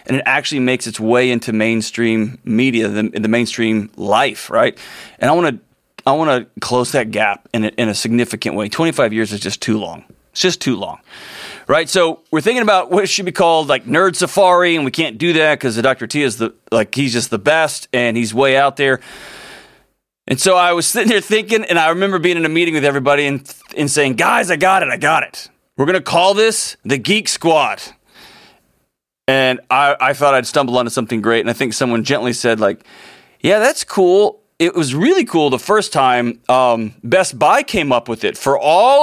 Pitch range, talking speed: 125-185 Hz, 215 wpm